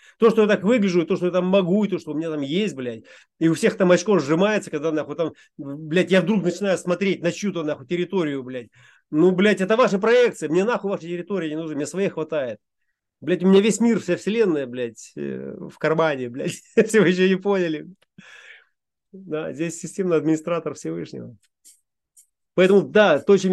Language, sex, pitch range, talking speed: Russian, male, 155-195 Hz, 195 wpm